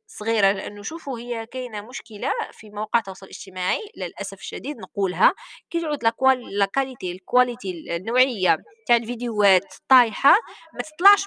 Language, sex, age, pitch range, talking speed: Arabic, female, 20-39, 210-310 Hz, 115 wpm